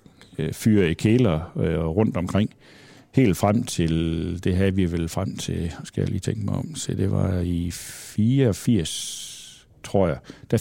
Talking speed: 165 wpm